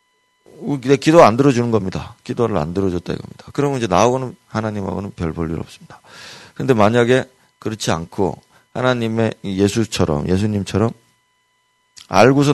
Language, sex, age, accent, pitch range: Korean, male, 40-59, native, 100-145 Hz